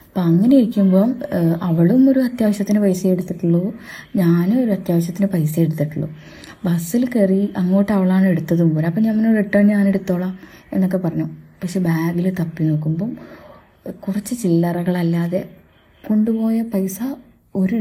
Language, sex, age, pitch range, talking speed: Malayalam, female, 20-39, 165-205 Hz, 110 wpm